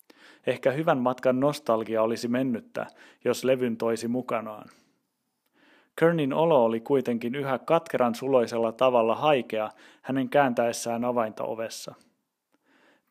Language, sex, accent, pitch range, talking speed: Finnish, male, native, 120-145 Hz, 105 wpm